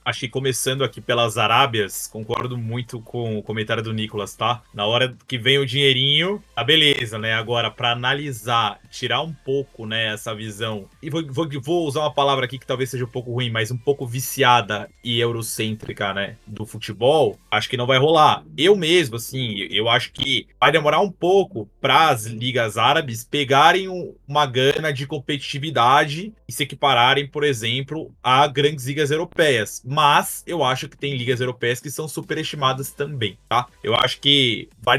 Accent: Brazilian